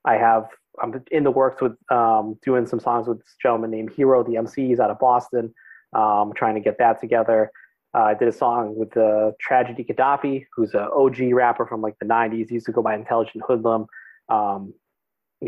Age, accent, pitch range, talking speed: 30-49, American, 110-125 Hz, 205 wpm